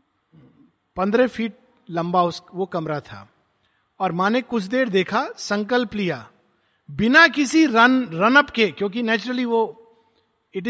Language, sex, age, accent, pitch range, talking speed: Hindi, male, 50-69, native, 165-220 Hz, 135 wpm